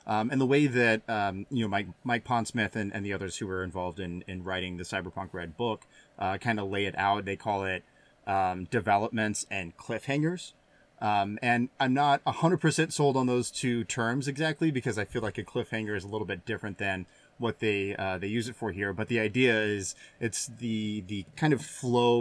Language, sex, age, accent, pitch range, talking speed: English, male, 30-49, American, 100-125 Hz, 220 wpm